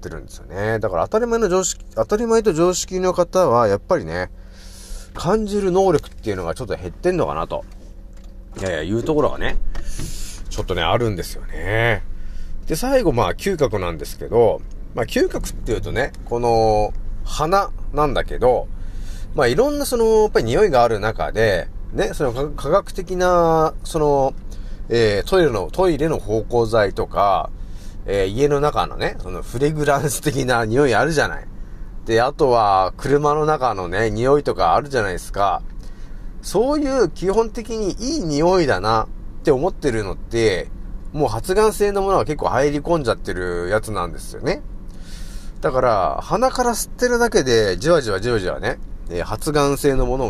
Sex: male